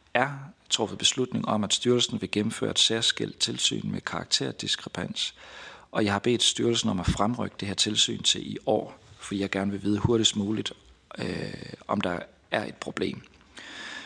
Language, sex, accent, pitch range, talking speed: Danish, male, native, 95-115 Hz, 170 wpm